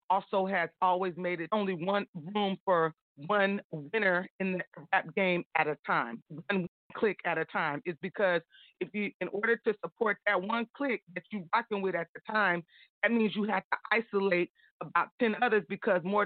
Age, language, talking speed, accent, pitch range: 30-49, English, 190 wpm, American, 180-225 Hz